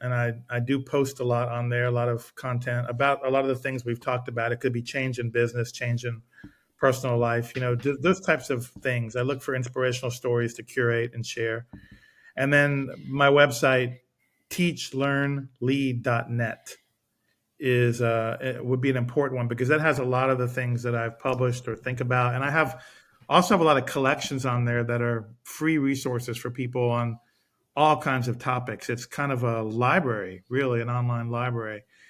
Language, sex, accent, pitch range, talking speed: English, male, American, 120-135 Hz, 195 wpm